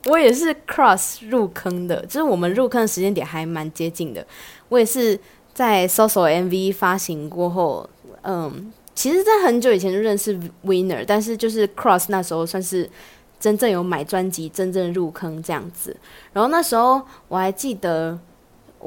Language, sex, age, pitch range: Chinese, female, 20-39, 185-250 Hz